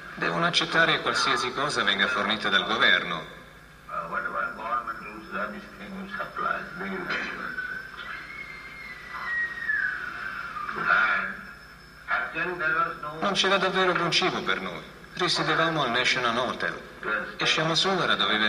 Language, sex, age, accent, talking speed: Italian, male, 50-69, native, 75 wpm